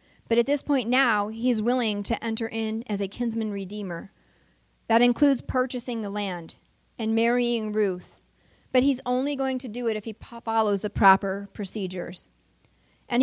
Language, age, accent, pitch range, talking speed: English, 40-59, American, 200-255 Hz, 165 wpm